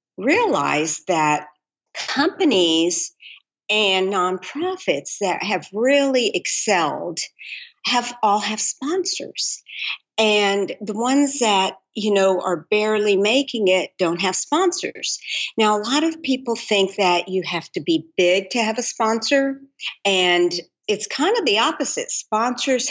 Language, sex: English, female